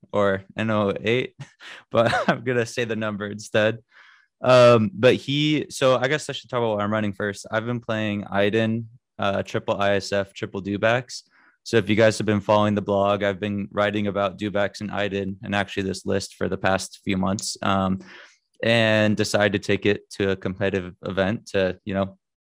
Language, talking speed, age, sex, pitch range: English, 190 wpm, 20-39, male, 100-110 Hz